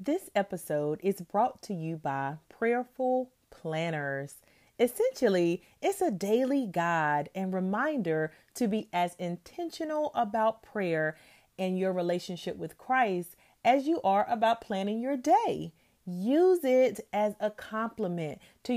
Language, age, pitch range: English, 30-49, 170-235 Hz